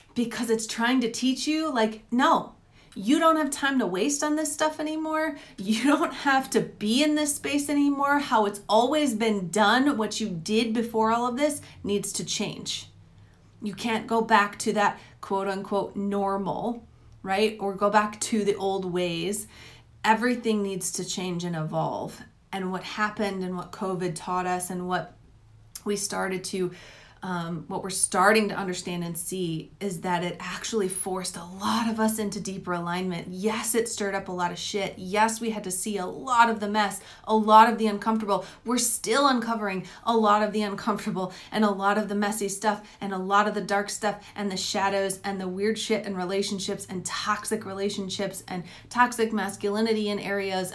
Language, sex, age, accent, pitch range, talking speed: English, female, 30-49, American, 190-225 Hz, 190 wpm